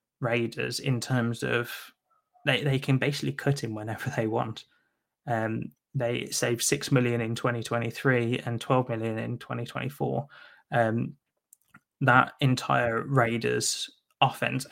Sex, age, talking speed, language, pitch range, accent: male, 20-39, 120 wpm, English, 115-135 Hz, British